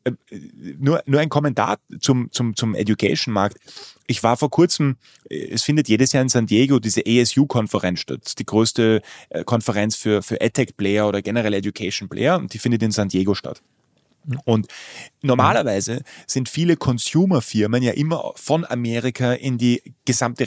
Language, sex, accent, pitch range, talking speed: German, male, German, 105-130 Hz, 150 wpm